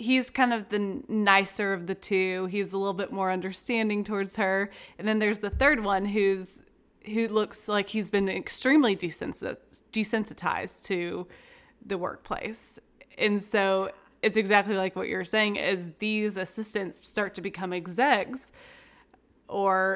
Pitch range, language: 185-215 Hz, English